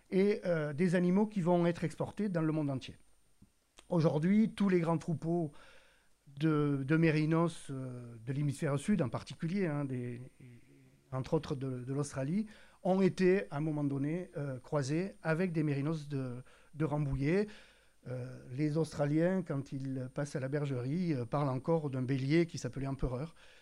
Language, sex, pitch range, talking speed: French, male, 140-180 Hz, 160 wpm